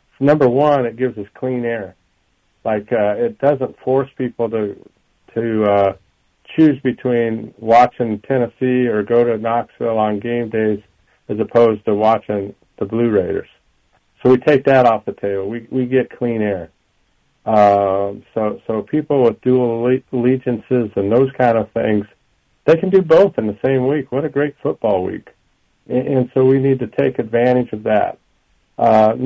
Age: 50-69